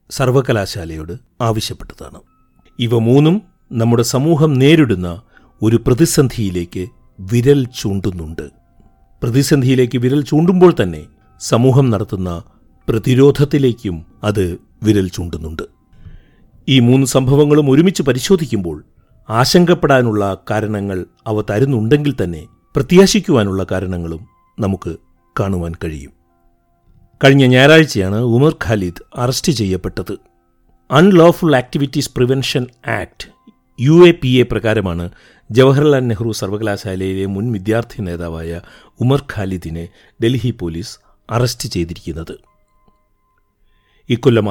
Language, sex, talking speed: Malayalam, male, 85 wpm